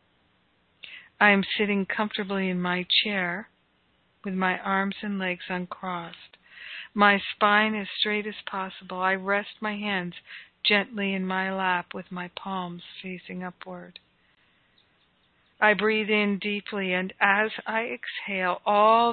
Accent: American